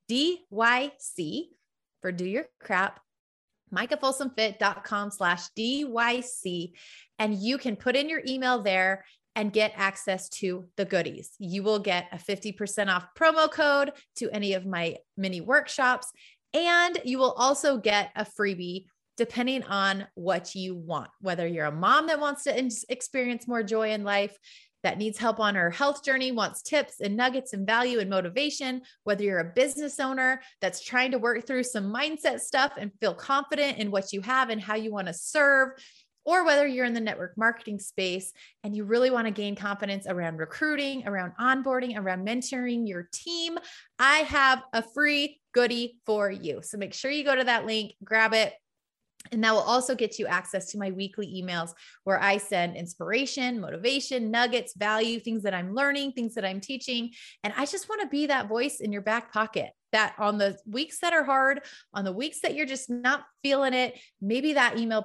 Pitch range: 200-265 Hz